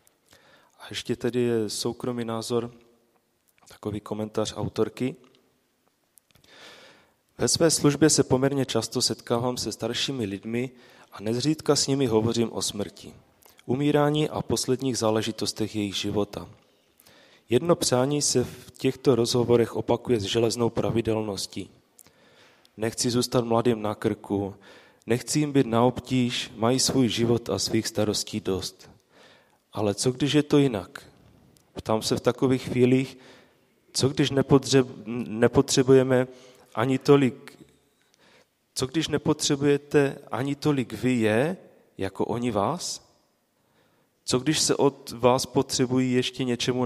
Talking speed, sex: 120 wpm, male